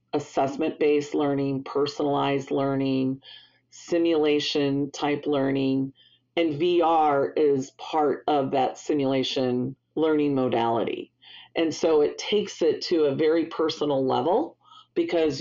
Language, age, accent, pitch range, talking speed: English, 40-59, American, 135-165 Hz, 100 wpm